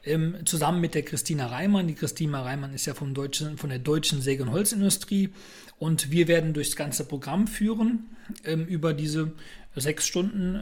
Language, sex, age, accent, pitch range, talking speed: German, male, 40-59, German, 145-180 Hz, 170 wpm